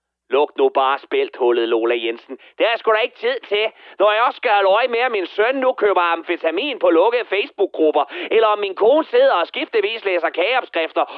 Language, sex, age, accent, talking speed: Danish, male, 30-49, native, 200 wpm